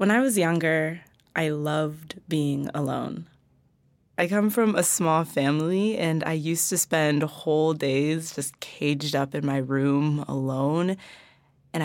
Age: 20-39